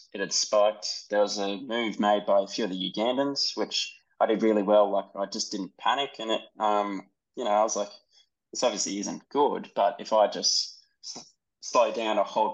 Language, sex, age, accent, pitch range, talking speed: English, male, 20-39, Australian, 100-110 Hz, 210 wpm